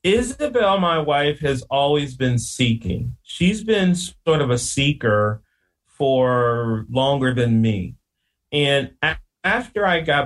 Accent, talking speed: American, 125 wpm